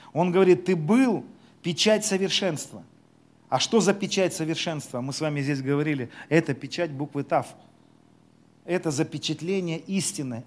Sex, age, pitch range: male, 40-59, 140-190 Hz